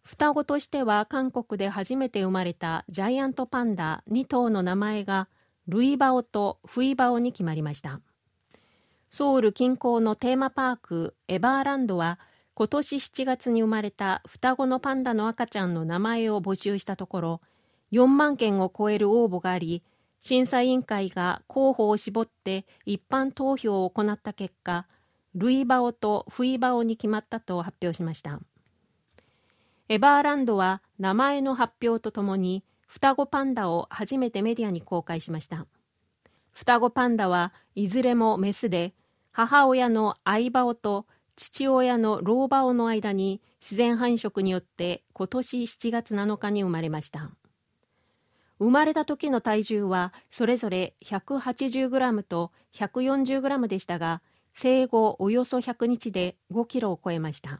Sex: female